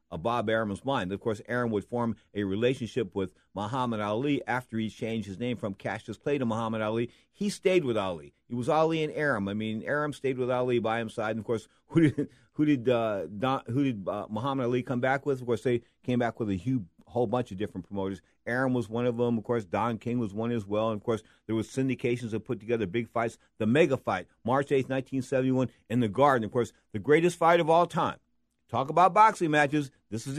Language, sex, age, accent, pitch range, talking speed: English, male, 50-69, American, 105-130 Hz, 240 wpm